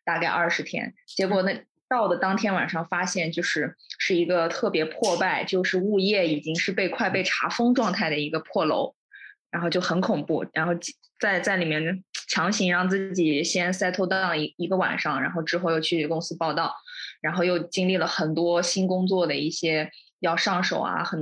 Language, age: Chinese, 20-39